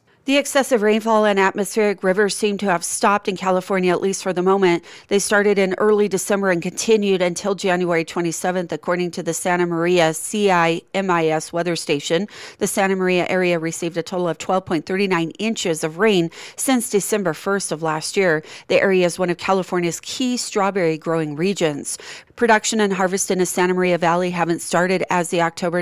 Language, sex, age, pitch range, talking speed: English, female, 40-59, 170-195 Hz, 175 wpm